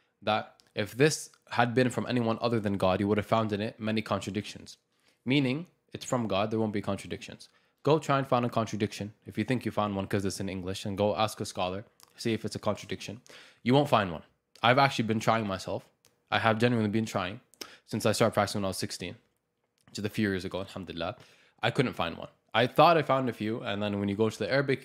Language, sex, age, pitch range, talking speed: English, male, 20-39, 105-125 Hz, 235 wpm